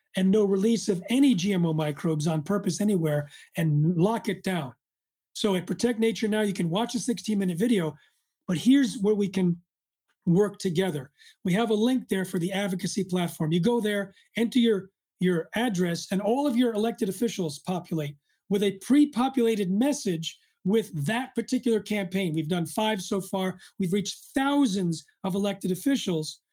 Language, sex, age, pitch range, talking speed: English, male, 40-59, 180-230 Hz, 165 wpm